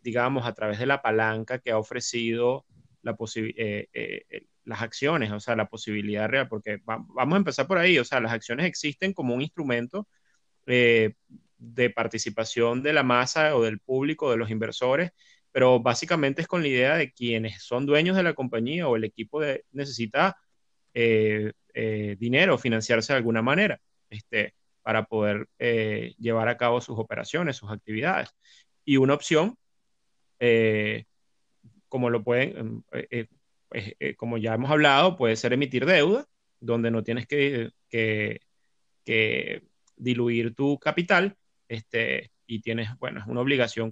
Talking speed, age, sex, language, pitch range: 165 wpm, 30-49, male, Spanish, 115-140 Hz